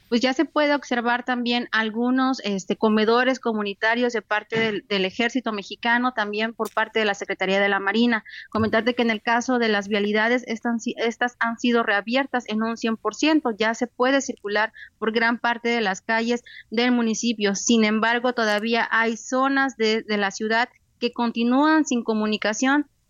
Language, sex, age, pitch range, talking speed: Spanish, female, 30-49, 220-245 Hz, 165 wpm